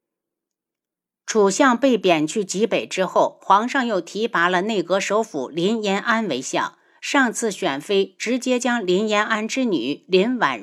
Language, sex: Chinese, female